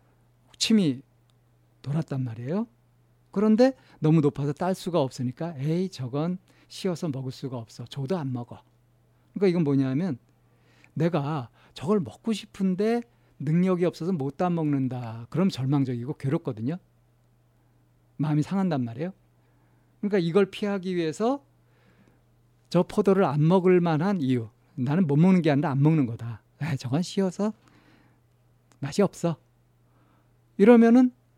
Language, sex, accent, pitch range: Korean, male, native, 120-175 Hz